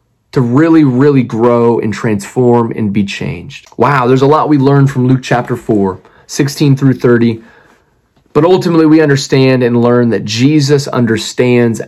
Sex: male